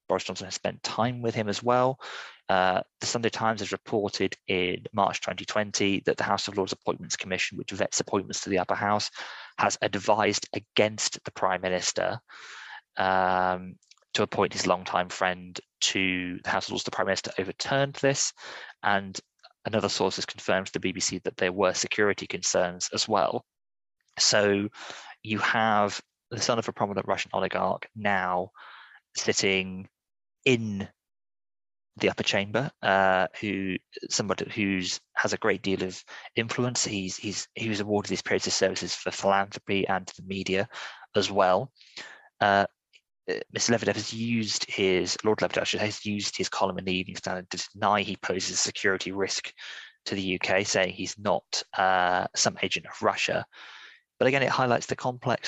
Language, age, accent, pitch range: English, 20-39, British, 95-110 Hz